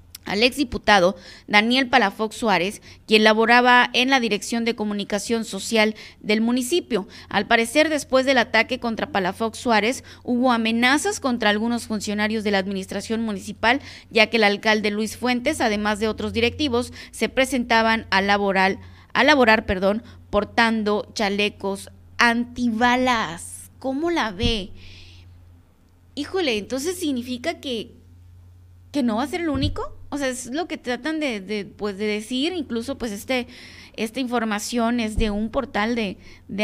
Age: 20-39